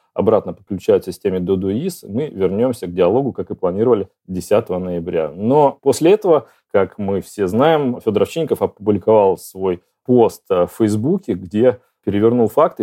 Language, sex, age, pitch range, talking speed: Russian, male, 30-49, 95-110 Hz, 140 wpm